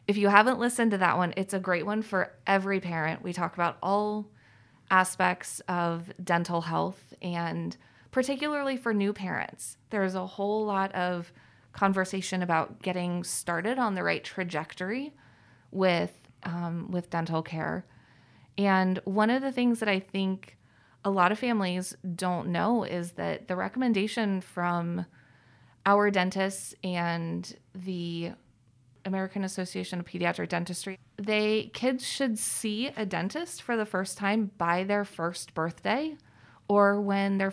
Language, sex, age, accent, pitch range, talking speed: English, female, 20-39, American, 170-205 Hz, 145 wpm